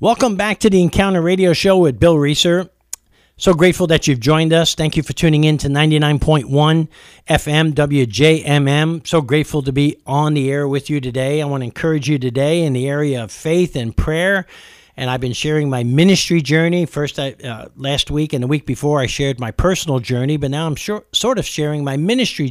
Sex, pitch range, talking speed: male, 130-155 Hz, 205 wpm